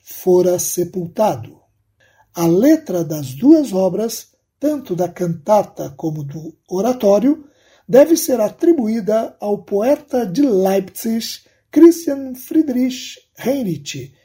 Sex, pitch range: male, 180-280 Hz